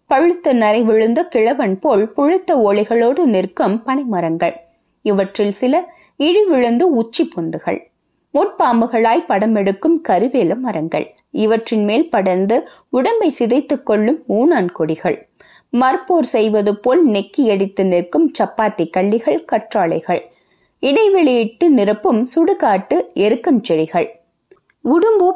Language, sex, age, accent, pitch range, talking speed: Tamil, female, 20-39, native, 195-295 Hz, 95 wpm